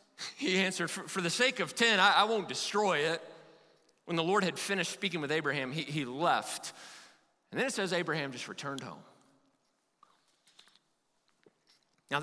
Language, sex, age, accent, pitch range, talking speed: English, male, 30-49, American, 180-225 Hz, 145 wpm